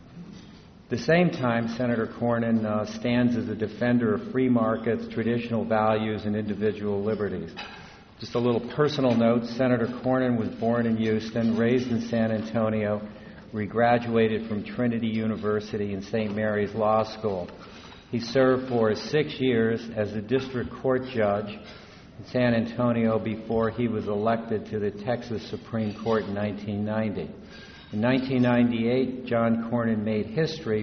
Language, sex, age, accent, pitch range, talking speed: English, male, 50-69, American, 105-120 Hz, 145 wpm